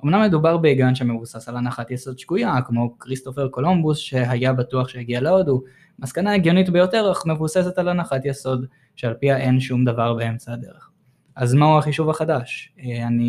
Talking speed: 160 wpm